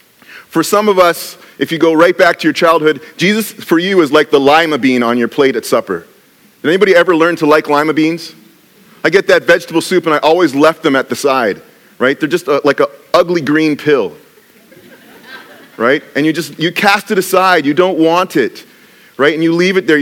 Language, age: English, 30-49